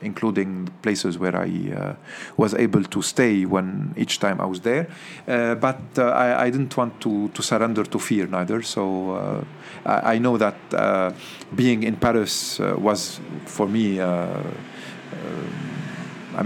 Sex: male